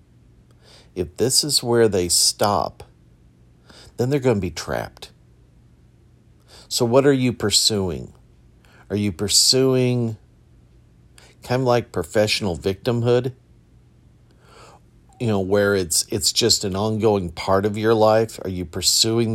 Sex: male